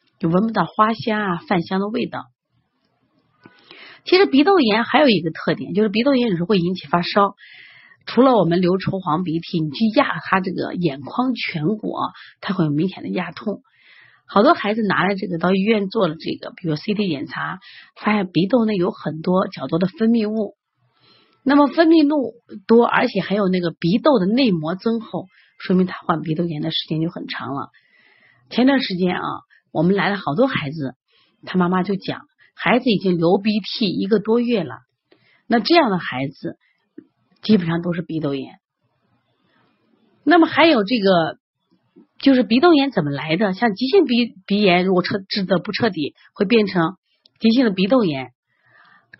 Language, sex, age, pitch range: Chinese, female, 30-49, 175-235 Hz